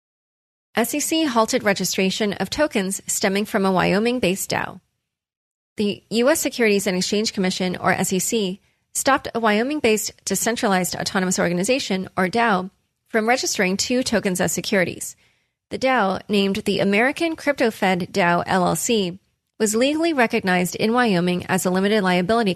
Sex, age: female, 30-49